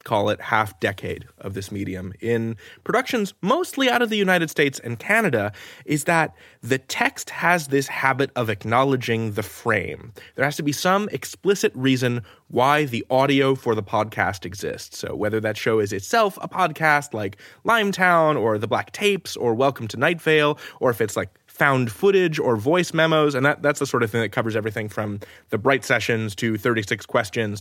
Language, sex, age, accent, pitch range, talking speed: English, male, 20-39, American, 115-170 Hz, 185 wpm